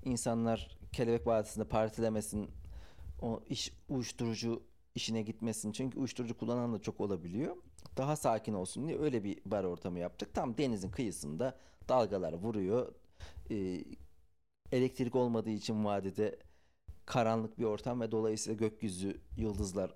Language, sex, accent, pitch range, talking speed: Turkish, male, native, 80-120 Hz, 125 wpm